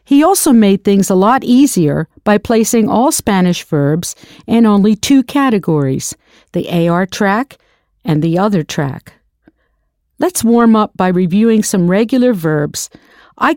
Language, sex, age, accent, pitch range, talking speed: English, female, 50-69, American, 175-235 Hz, 140 wpm